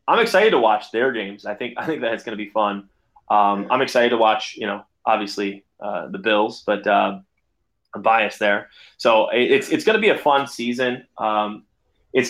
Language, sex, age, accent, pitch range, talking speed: English, male, 20-39, American, 105-125 Hz, 215 wpm